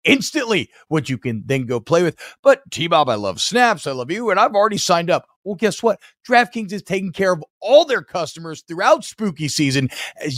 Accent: American